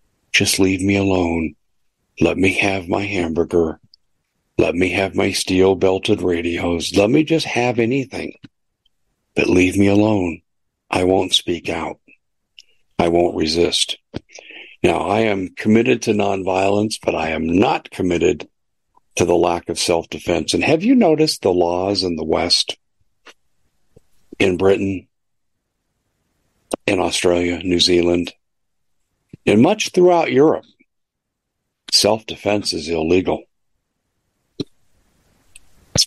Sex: male